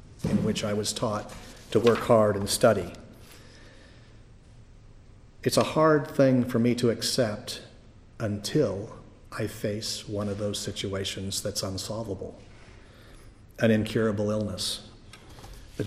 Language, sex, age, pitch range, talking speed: English, male, 50-69, 100-115 Hz, 115 wpm